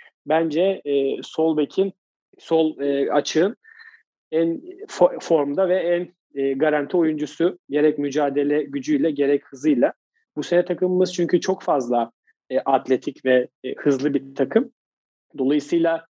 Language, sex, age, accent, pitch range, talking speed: Turkish, male, 40-59, native, 145-185 Hz, 125 wpm